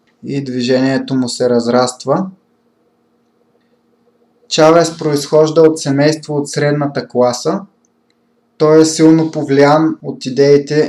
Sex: male